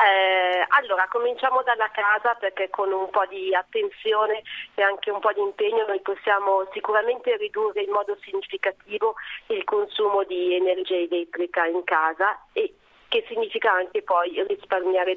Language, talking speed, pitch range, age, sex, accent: Italian, 145 wpm, 185-255 Hz, 40-59, female, native